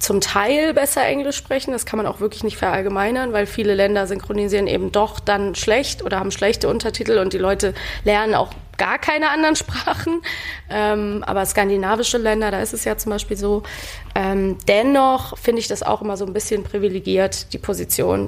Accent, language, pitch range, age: German, German, 190-215 Hz, 20-39